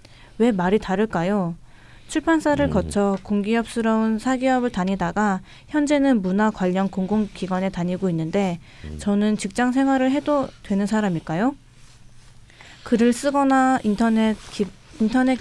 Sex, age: female, 20-39